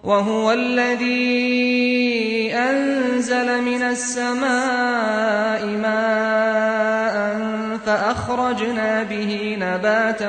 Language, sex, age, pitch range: French, male, 30-49, 210-245 Hz